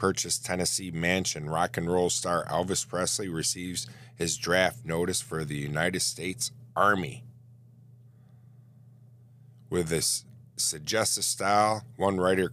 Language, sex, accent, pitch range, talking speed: English, male, American, 90-125 Hz, 115 wpm